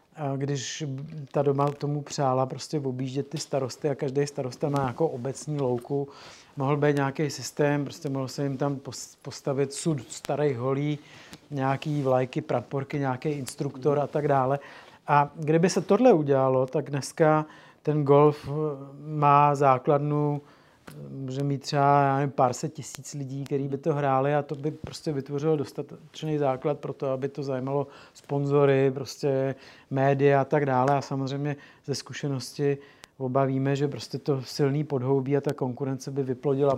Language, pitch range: Czech, 135-150 Hz